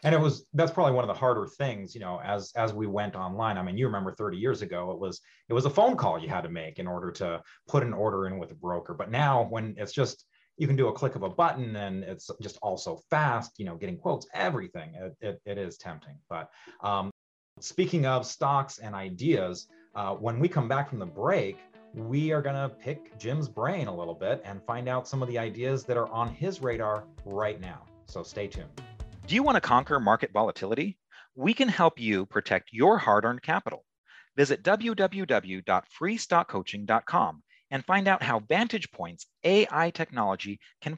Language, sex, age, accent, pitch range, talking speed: English, male, 30-49, American, 105-165 Hz, 210 wpm